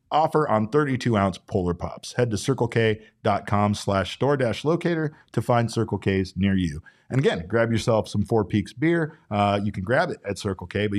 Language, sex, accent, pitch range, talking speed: English, male, American, 100-130 Hz, 185 wpm